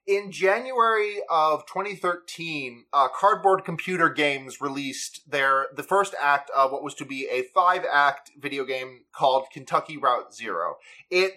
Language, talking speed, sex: English, 145 wpm, male